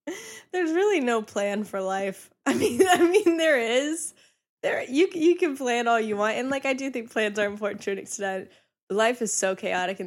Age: 10-29